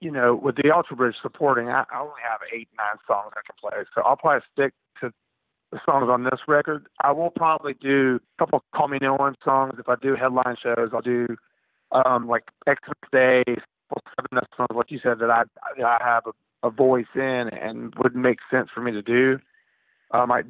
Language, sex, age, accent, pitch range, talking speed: English, male, 40-59, American, 115-135 Hz, 225 wpm